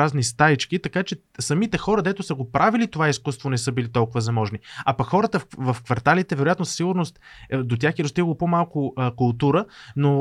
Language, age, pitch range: Bulgarian, 20-39, 135-175 Hz